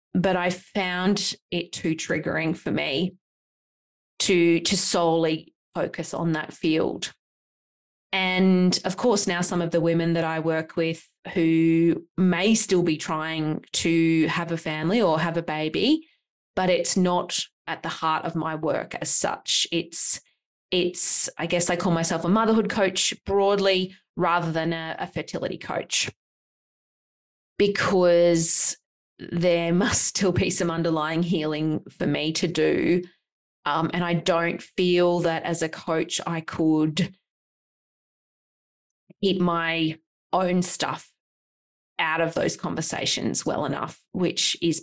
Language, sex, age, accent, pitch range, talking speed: English, female, 20-39, Australian, 160-185 Hz, 140 wpm